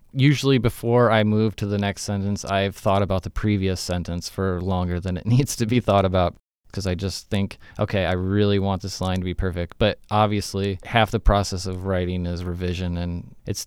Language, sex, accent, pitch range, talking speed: English, male, American, 95-110 Hz, 205 wpm